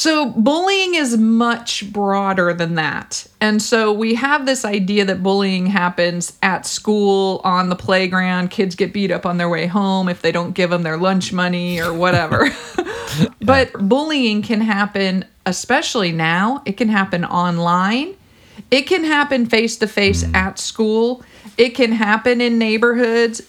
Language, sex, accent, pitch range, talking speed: English, female, American, 185-240 Hz, 160 wpm